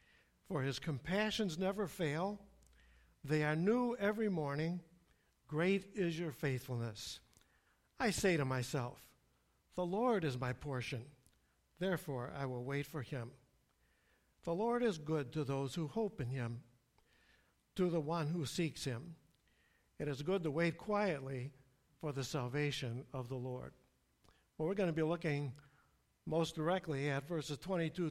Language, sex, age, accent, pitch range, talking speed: English, male, 60-79, American, 130-175 Hz, 145 wpm